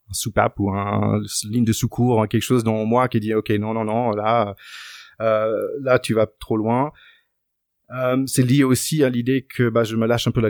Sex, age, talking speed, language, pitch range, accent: male, 30-49, 215 wpm, French, 105-125 Hz, French